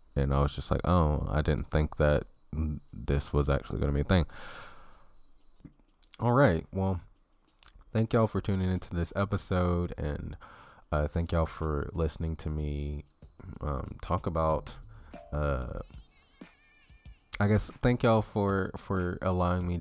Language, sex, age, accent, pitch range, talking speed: English, male, 20-39, American, 80-100 Hz, 145 wpm